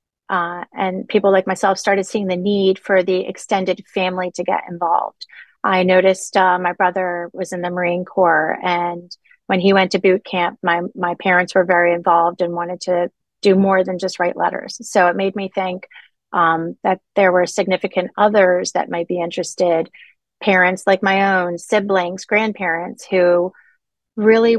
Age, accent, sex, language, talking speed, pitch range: 30-49, American, female, English, 175 wpm, 180-195 Hz